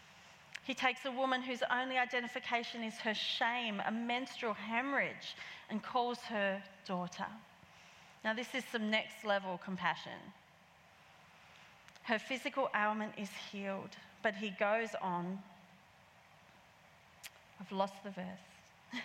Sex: female